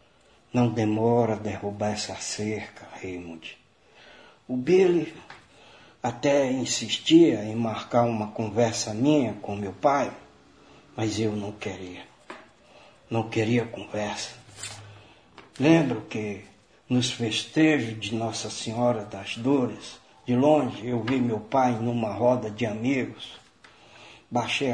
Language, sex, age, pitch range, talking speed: Portuguese, male, 60-79, 110-125 Hz, 110 wpm